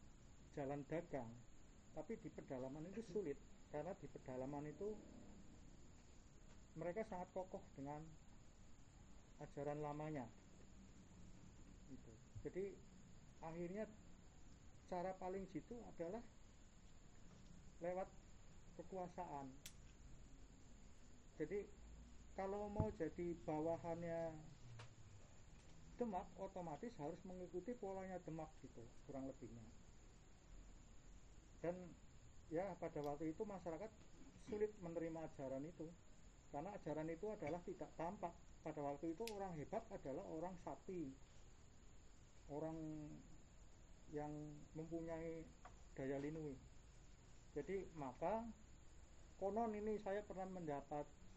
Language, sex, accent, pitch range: Indonesian, male, native, 130-180 Hz